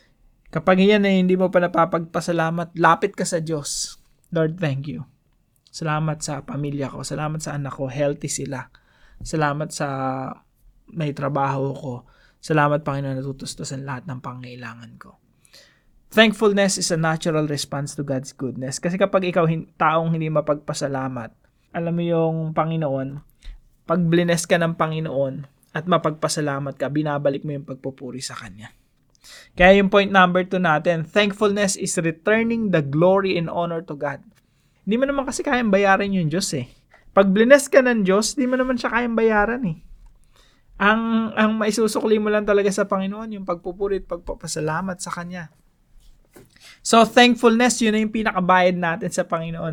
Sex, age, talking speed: male, 20-39, 150 wpm